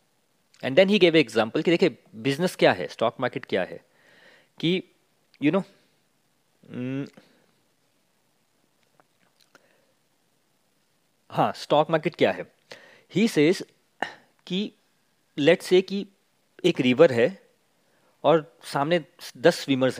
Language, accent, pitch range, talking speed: Hindi, native, 135-185 Hz, 100 wpm